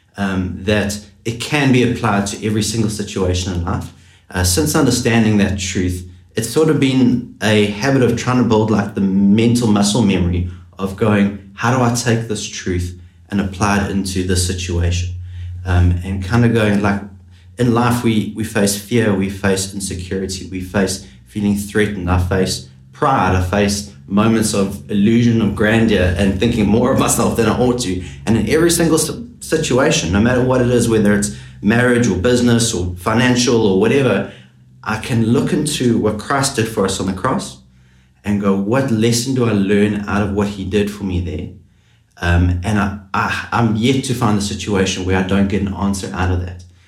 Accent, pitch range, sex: Australian, 95-115 Hz, male